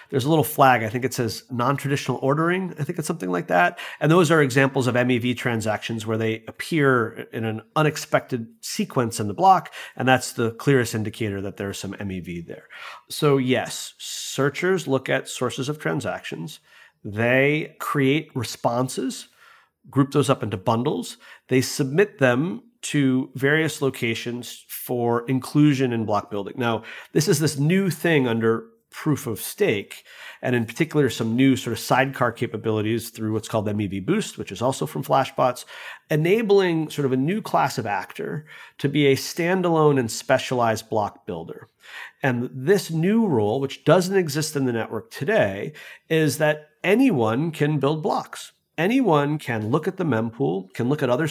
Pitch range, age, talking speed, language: 115-150 Hz, 40-59, 165 wpm, English